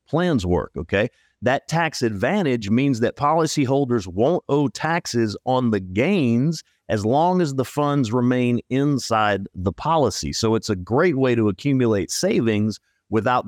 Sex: male